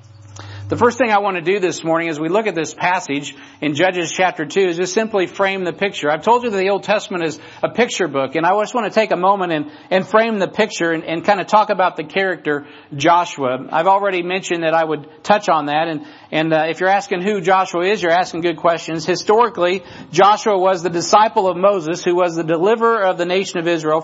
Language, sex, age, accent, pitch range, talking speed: English, male, 50-69, American, 160-195 Hz, 240 wpm